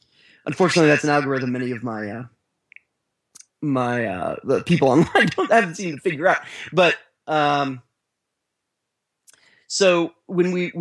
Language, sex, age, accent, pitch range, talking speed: English, male, 30-49, American, 130-170 Hz, 135 wpm